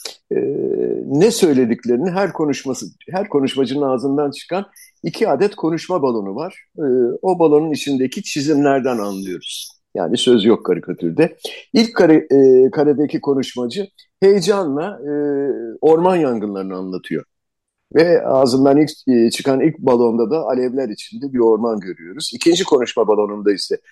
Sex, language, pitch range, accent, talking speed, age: male, Turkish, 120-180 Hz, native, 130 wpm, 50-69